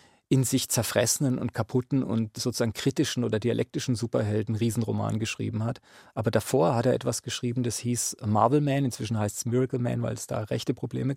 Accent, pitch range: German, 115-135 Hz